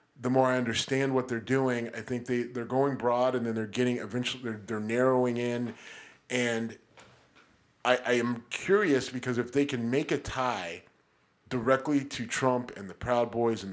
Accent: American